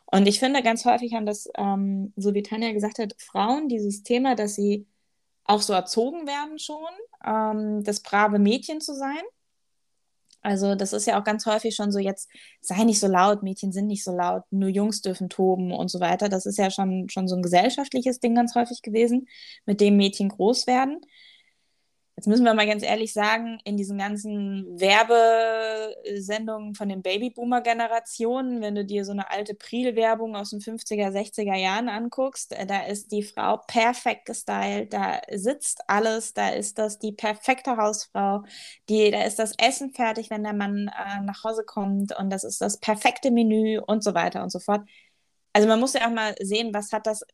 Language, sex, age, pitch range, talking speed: German, female, 20-39, 200-230 Hz, 190 wpm